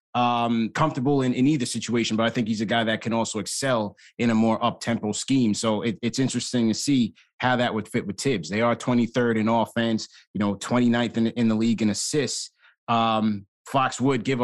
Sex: male